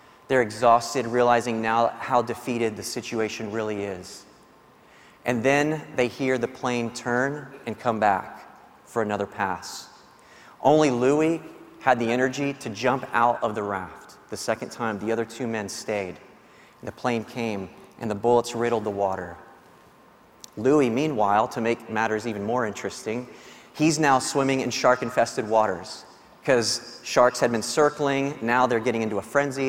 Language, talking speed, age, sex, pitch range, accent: English, 155 wpm, 30-49, male, 110-130 Hz, American